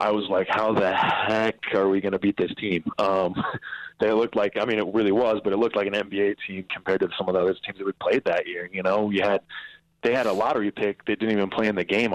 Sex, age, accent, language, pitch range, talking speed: male, 20-39, American, English, 95-110 Hz, 280 wpm